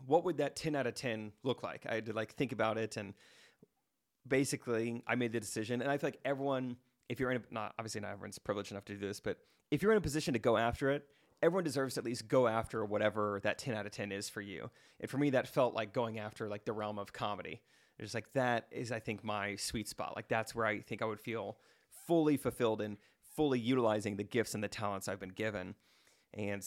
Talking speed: 245 wpm